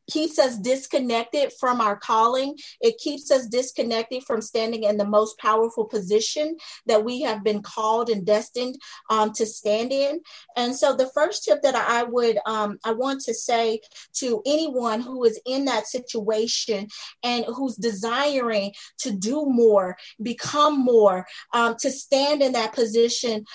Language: English